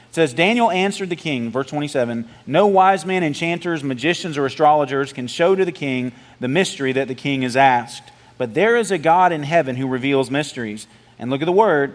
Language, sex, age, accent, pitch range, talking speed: English, male, 40-59, American, 135-170 Hz, 210 wpm